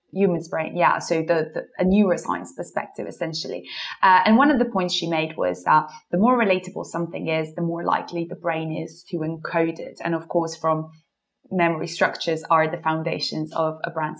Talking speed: 195 wpm